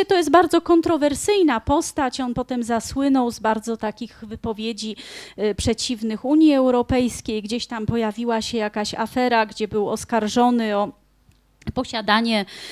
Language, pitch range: Polish, 220-275 Hz